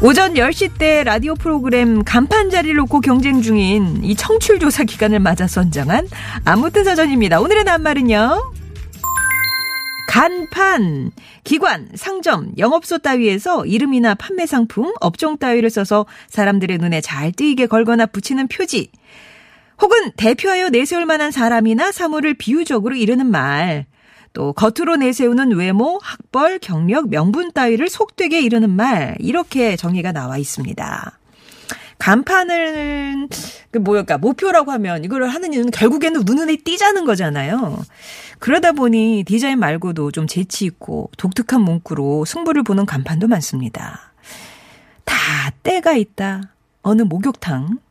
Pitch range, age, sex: 200-310 Hz, 40-59, female